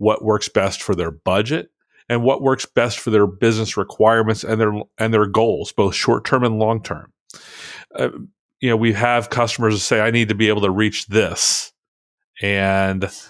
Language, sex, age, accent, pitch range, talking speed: English, male, 40-59, American, 100-120 Hz, 175 wpm